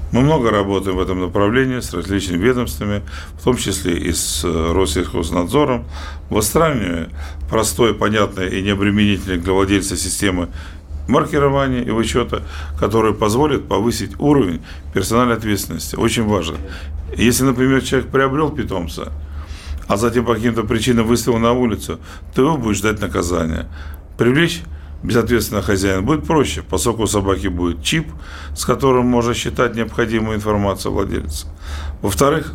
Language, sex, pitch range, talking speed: Russian, male, 80-115 Hz, 130 wpm